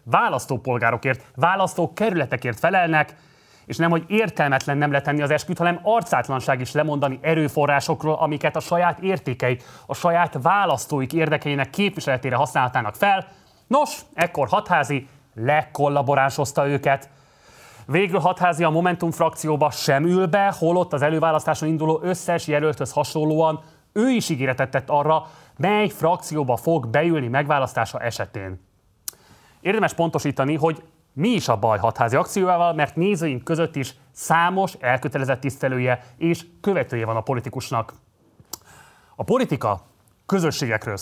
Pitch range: 130-170 Hz